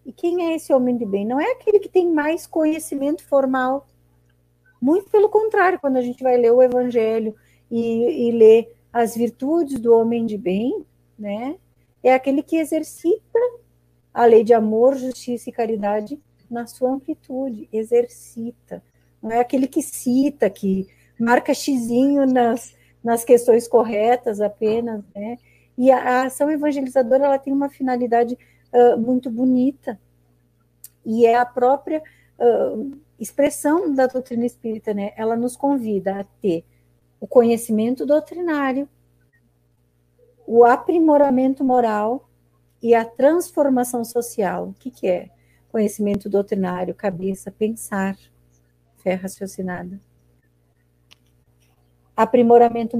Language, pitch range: Portuguese, 200-270 Hz